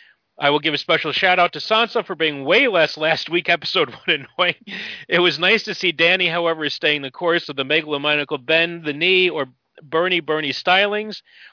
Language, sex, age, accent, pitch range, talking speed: English, male, 40-59, American, 140-175 Hz, 195 wpm